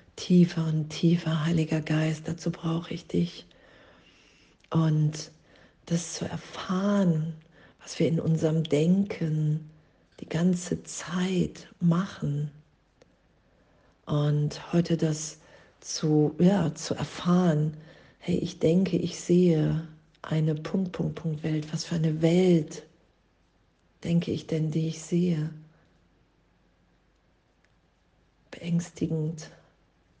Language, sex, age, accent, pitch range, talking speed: German, female, 40-59, German, 155-170 Hz, 95 wpm